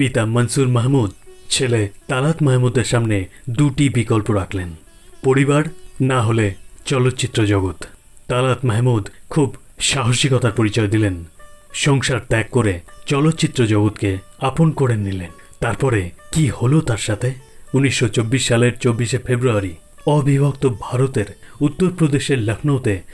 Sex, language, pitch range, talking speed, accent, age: male, Bengali, 110-140 Hz, 110 wpm, native, 30-49